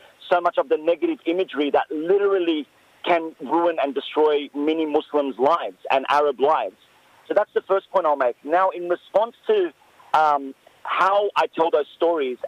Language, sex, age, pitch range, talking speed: English, male, 40-59, 155-220 Hz, 170 wpm